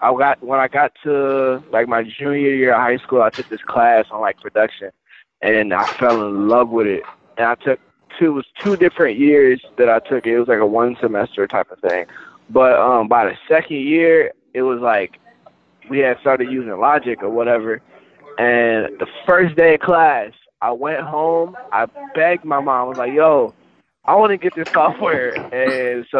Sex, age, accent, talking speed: male, 20-39, American, 205 wpm